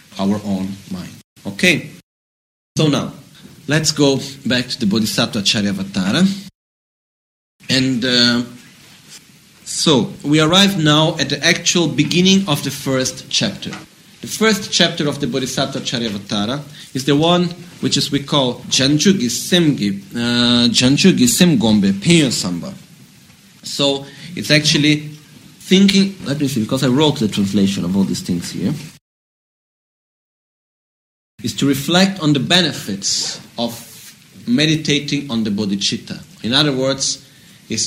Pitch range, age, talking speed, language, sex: 120-170 Hz, 30-49, 130 wpm, Italian, male